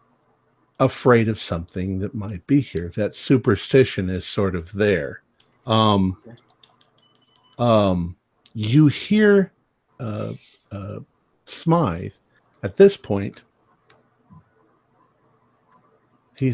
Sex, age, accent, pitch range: male, 50-69, American, 100-140 Hz